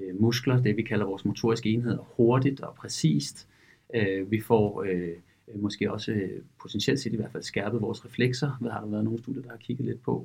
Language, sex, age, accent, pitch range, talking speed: Danish, male, 40-59, native, 110-125 Hz, 195 wpm